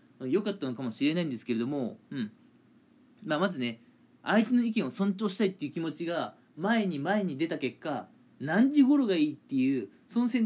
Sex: male